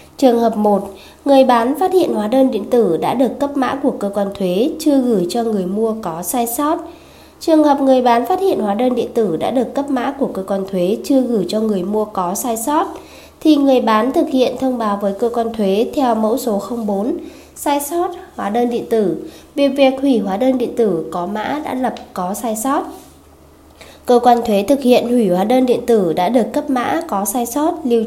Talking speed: 225 wpm